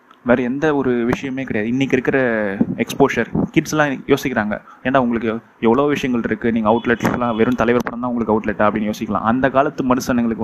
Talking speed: 160 wpm